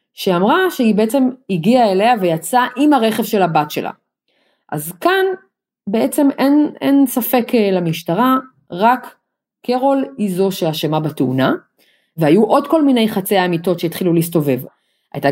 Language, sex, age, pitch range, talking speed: Hebrew, female, 30-49, 155-220 Hz, 130 wpm